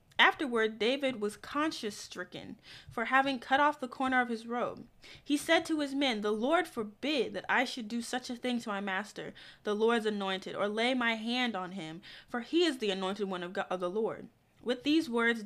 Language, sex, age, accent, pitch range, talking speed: English, female, 20-39, American, 200-260 Hz, 215 wpm